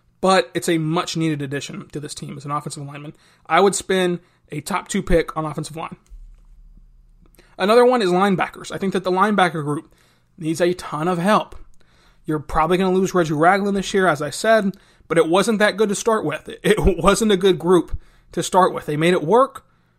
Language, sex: English, male